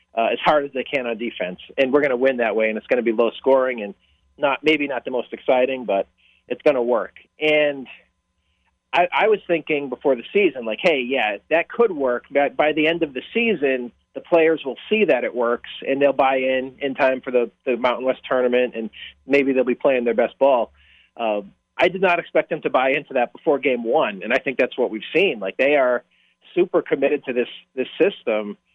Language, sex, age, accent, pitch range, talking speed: English, male, 30-49, American, 115-145 Hz, 230 wpm